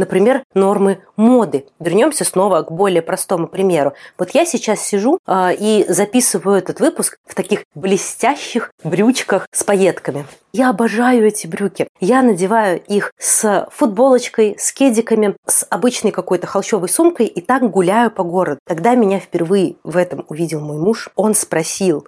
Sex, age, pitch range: female, 30-49, 160-210 Hz